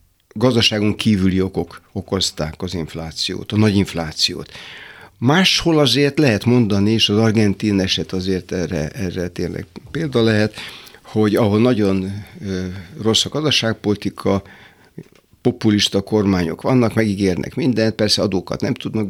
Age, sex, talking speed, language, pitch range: 60-79, male, 120 wpm, Hungarian, 95-120 Hz